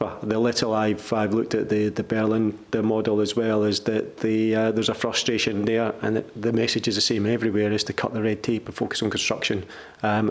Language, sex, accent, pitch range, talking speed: English, male, British, 105-115 Hz, 225 wpm